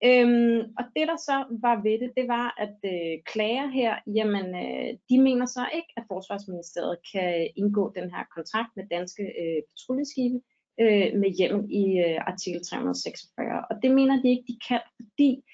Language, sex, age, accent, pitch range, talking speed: Danish, female, 30-49, native, 190-240 Hz, 180 wpm